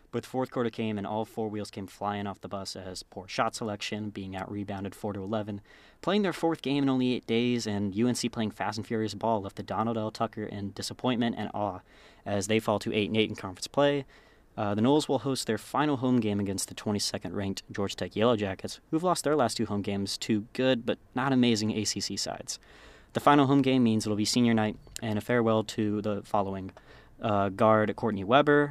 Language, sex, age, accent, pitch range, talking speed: English, male, 20-39, American, 100-120 Hz, 215 wpm